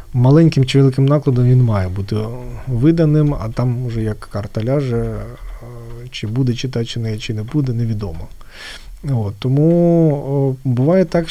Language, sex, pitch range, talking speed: Ukrainian, male, 115-140 Hz, 140 wpm